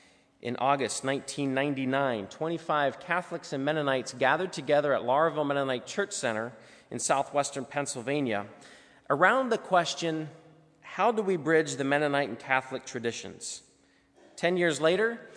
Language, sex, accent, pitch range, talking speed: English, male, American, 135-175 Hz, 125 wpm